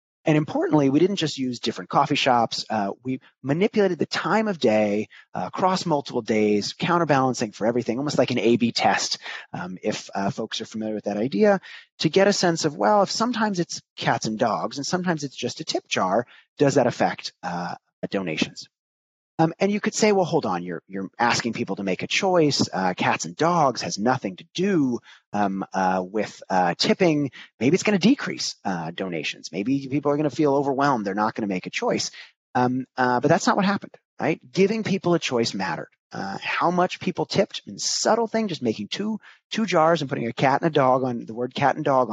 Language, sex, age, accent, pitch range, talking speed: English, male, 30-49, American, 115-170 Hz, 215 wpm